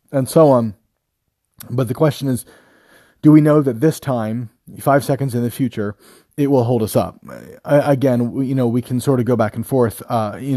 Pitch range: 115-140 Hz